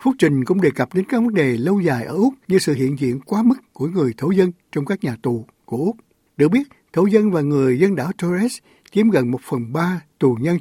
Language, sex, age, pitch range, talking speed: Vietnamese, male, 60-79, 140-200 Hz, 255 wpm